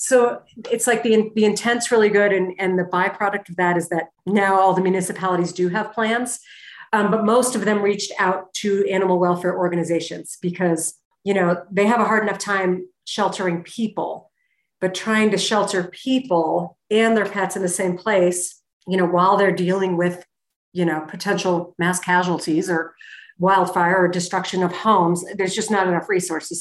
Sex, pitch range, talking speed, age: female, 180-215 Hz, 180 wpm, 50-69